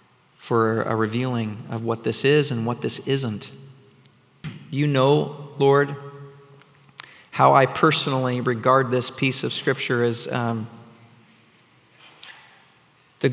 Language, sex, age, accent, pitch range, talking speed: English, male, 40-59, American, 110-130 Hz, 115 wpm